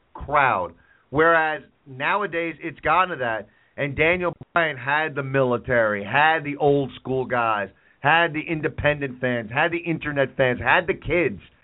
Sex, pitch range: male, 130-160 Hz